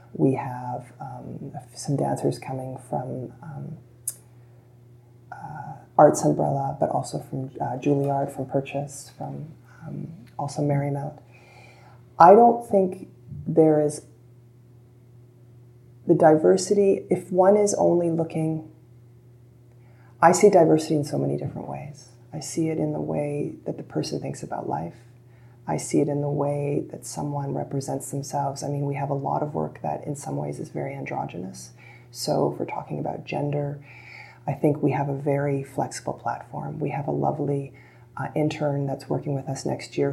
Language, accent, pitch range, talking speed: English, American, 120-150 Hz, 155 wpm